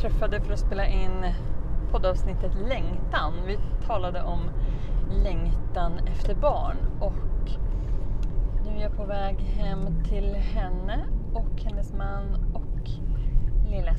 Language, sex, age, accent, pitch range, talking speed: Swedish, female, 30-49, native, 80-115 Hz, 120 wpm